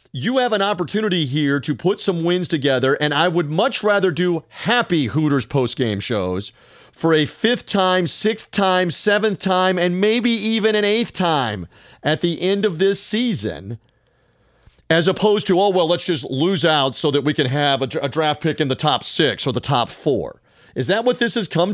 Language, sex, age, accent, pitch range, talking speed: English, male, 40-59, American, 145-190 Hz, 195 wpm